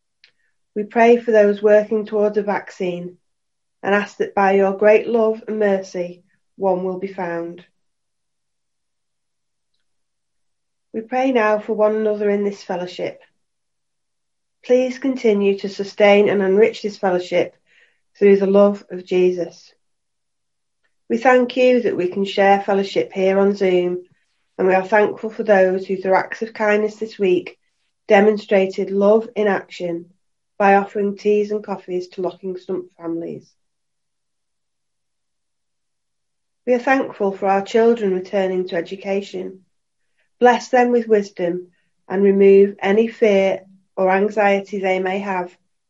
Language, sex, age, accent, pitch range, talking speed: English, female, 30-49, British, 185-215 Hz, 135 wpm